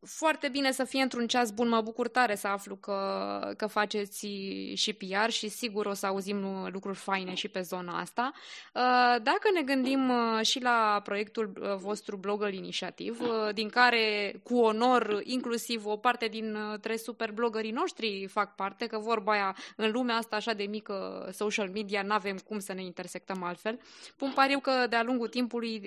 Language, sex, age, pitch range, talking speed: Romanian, female, 20-39, 200-240 Hz, 170 wpm